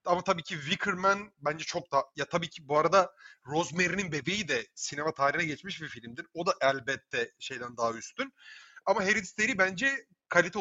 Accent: native